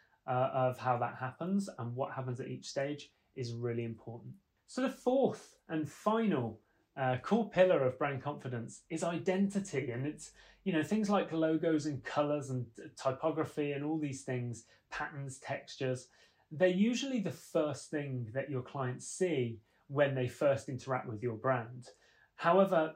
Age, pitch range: 30-49, 125-160 Hz